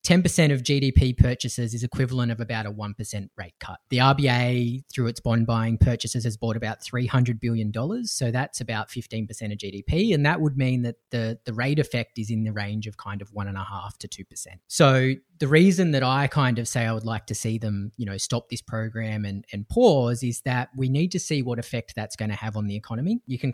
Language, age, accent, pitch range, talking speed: English, 30-49, Australian, 105-130 Hz, 230 wpm